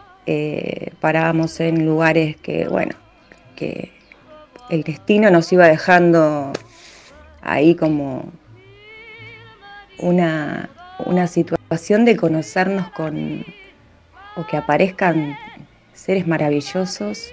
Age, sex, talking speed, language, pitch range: 30-49, female, 85 wpm, Spanish, 160-180 Hz